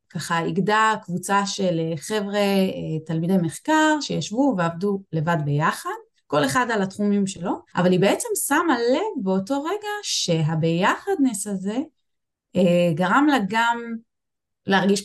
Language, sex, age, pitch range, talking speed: Hebrew, female, 20-39, 165-220 Hz, 115 wpm